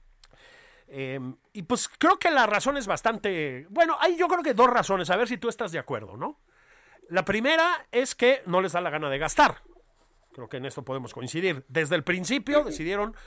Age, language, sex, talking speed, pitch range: 40-59, Spanish, male, 205 wpm, 155-230 Hz